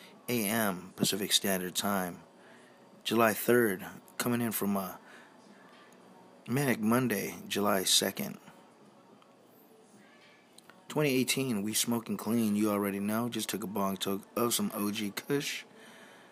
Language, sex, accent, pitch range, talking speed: English, male, American, 100-120 Hz, 110 wpm